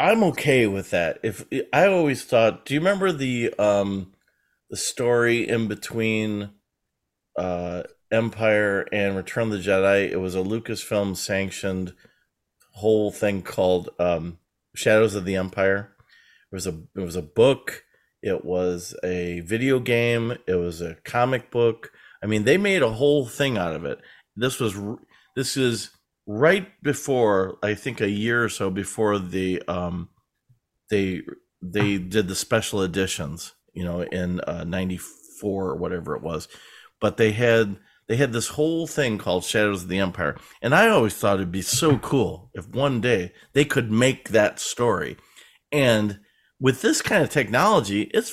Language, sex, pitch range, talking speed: English, male, 95-120 Hz, 160 wpm